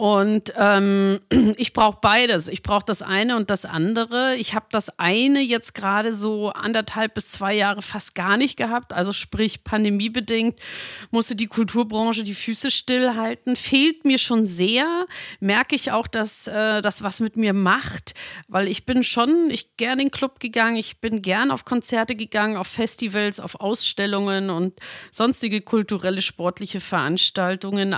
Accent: German